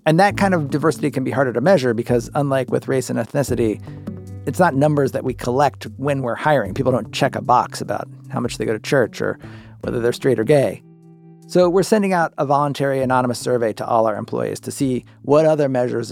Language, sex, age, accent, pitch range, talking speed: English, male, 40-59, American, 115-155 Hz, 225 wpm